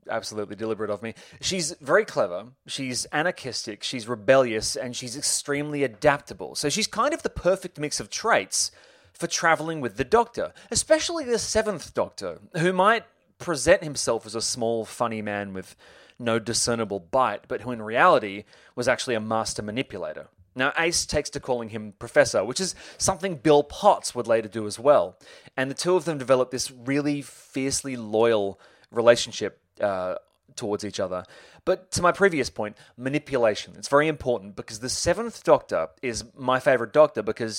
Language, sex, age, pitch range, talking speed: English, male, 30-49, 115-150 Hz, 170 wpm